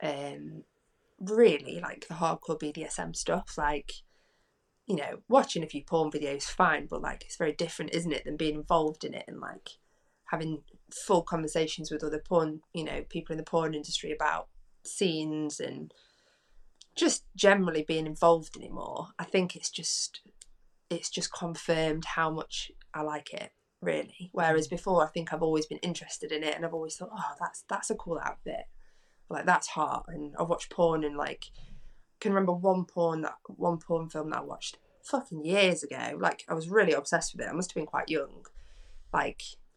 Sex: female